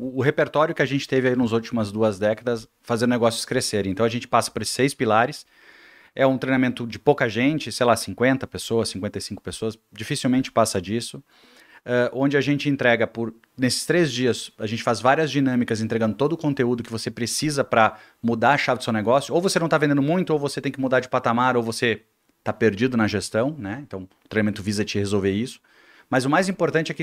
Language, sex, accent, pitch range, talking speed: Portuguese, male, Brazilian, 115-140 Hz, 215 wpm